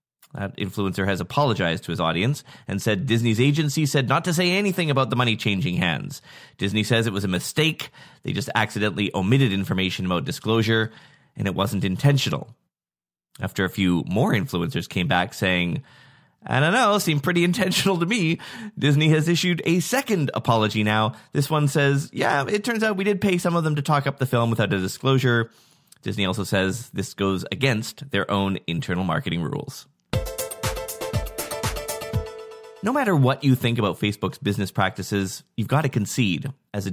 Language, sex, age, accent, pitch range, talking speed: English, male, 20-39, American, 105-155 Hz, 175 wpm